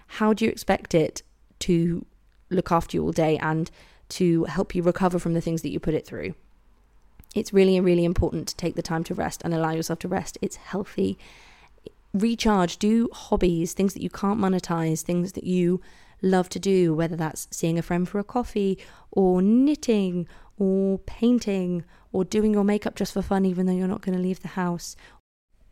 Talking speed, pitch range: 195 wpm, 165-195 Hz